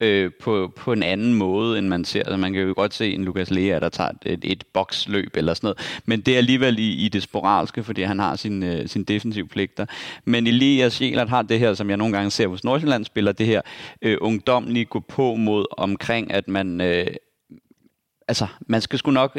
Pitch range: 100-120 Hz